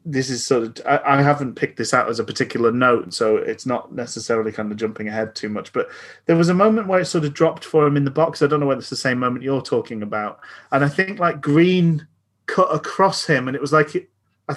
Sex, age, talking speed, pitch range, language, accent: male, 30-49, 245 wpm, 115-155 Hz, English, British